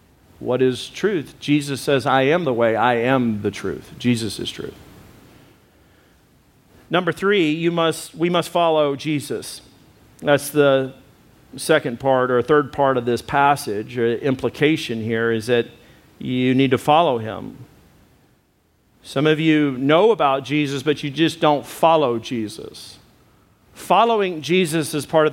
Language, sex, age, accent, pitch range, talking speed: English, male, 50-69, American, 135-175 Hz, 145 wpm